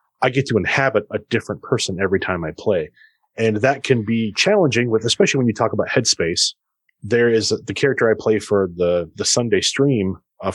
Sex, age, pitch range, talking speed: male, 30-49, 100-125 Hz, 200 wpm